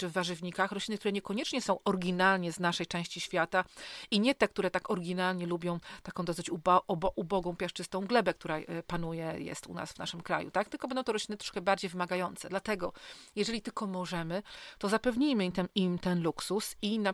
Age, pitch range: 40-59, 180-210 Hz